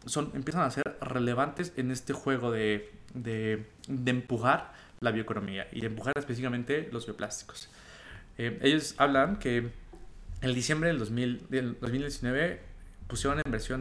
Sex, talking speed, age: male, 145 wpm, 20-39